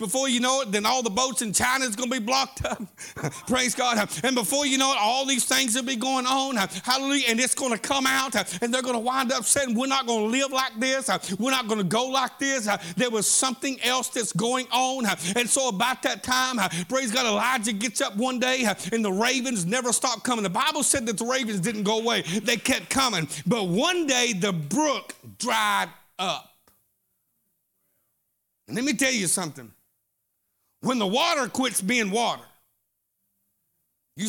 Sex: male